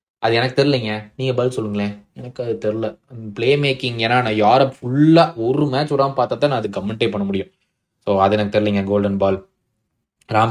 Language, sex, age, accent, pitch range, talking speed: Tamil, male, 20-39, native, 110-150 Hz, 185 wpm